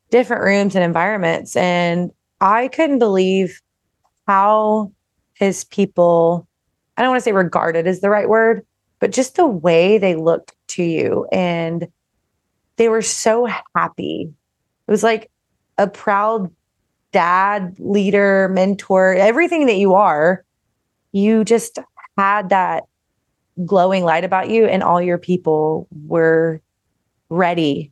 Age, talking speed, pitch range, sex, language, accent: 20-39, 130 wpm, 170-215 Hz, female, English, American